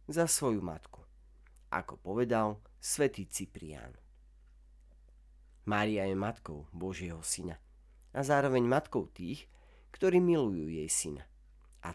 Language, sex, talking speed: Slovak, male, 105 wpm